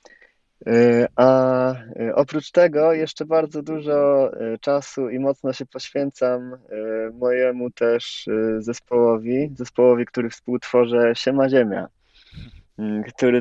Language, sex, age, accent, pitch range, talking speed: Polish, male, 20-39, native, 110-130 Hz, 90 wpm